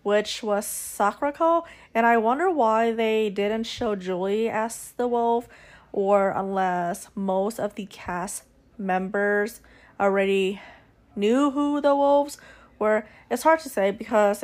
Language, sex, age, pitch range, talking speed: English, female, 20-39, 195-225 Hz, 135 wpm